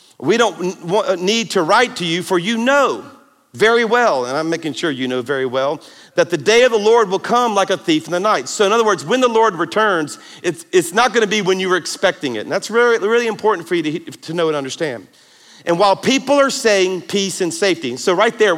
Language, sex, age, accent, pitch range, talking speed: English, male, 50-69, American, 165-220 Hz, 240 wpm